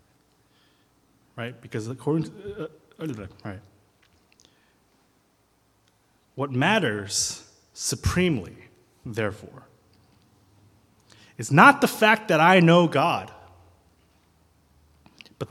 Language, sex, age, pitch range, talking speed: English, male, 30-49, 105-145 Hz, 75 wpm